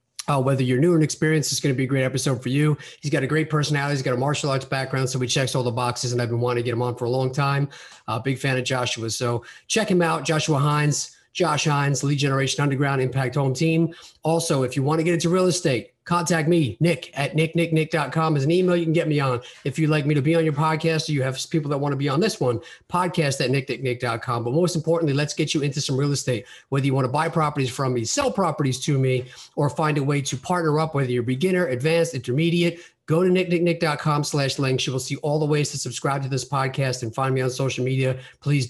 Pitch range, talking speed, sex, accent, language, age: 130-160 Hz, 255 wpm, male, American, English, 40-59